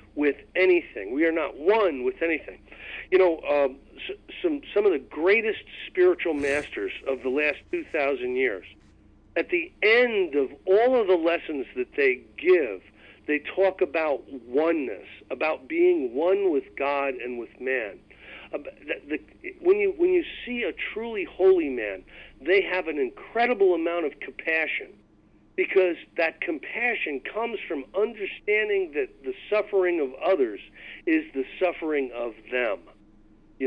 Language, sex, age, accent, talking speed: English, male, 50-69, American, 145 wpm